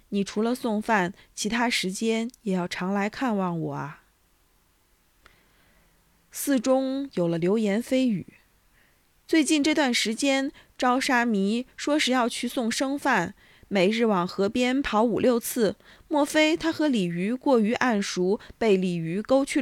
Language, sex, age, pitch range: Chinese, female, 20-39, 190-250 Hz